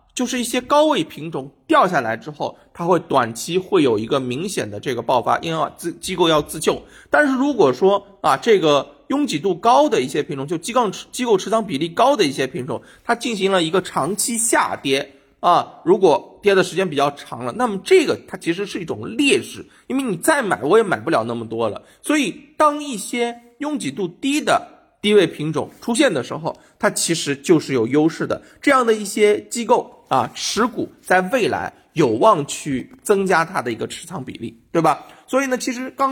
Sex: male